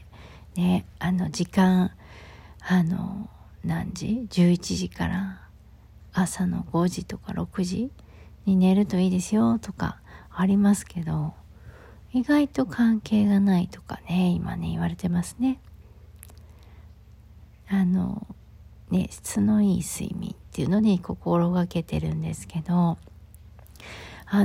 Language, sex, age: Japanese, female, 40-59